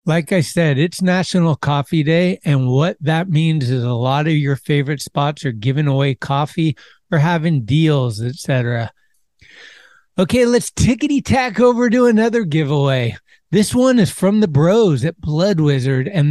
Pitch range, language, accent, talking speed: 140-185 Hz, English, American, 160 wpm